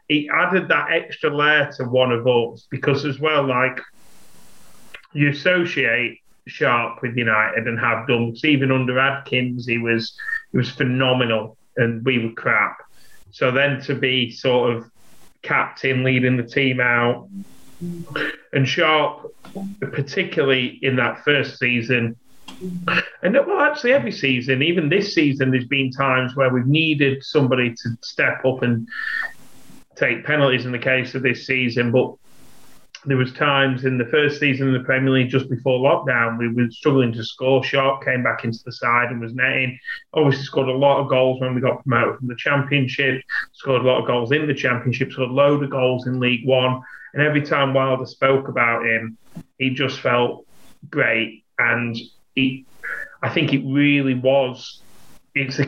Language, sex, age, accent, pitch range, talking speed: English, male, 30-49, British, 125-140 Hz, 165 wpm